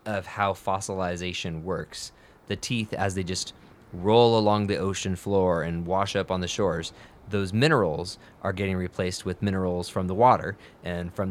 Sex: male